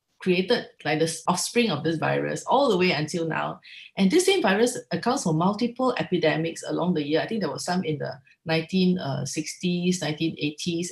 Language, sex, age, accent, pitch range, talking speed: English, female, 30-49, Malaysian, 155-195 Hz, 175 wpm